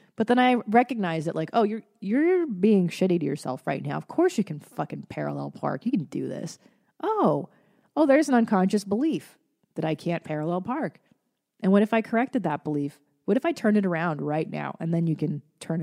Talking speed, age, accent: 215 wpm, 30-49, American